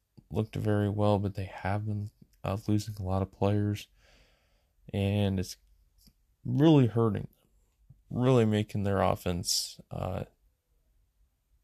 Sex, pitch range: male, 95-105 Hz